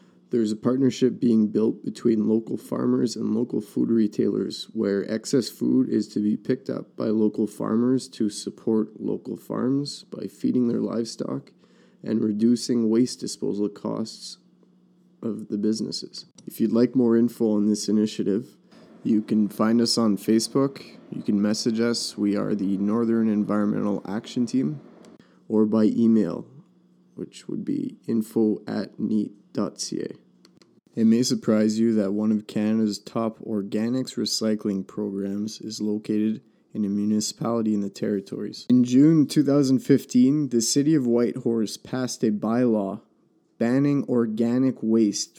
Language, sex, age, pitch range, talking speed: English, male, 20-39, 105-125 Hz, 140 wpm